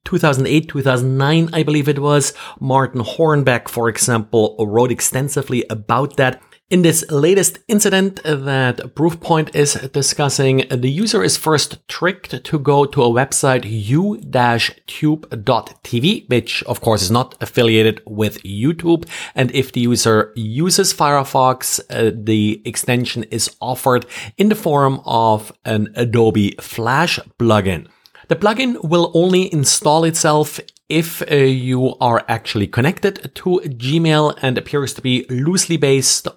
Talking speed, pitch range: 130 wpm, 110-145 Hz